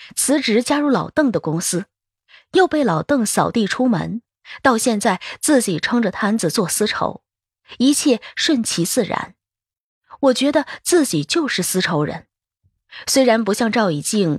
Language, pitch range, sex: Chinese, 190-285 Hz, female